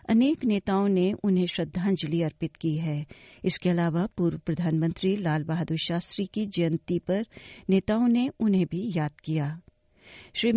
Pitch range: 170-210 Hz